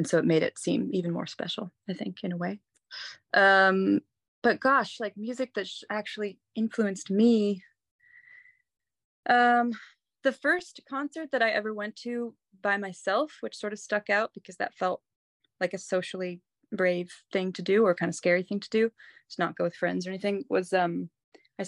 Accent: American